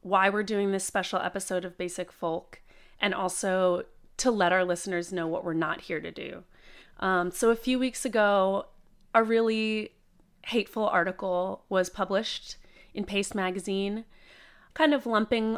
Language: English